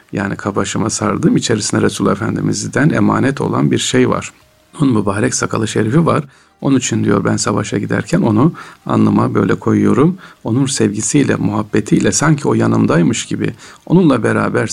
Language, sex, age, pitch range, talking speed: Turkish, male, 40-59, 105-145 Hz, 145 wpm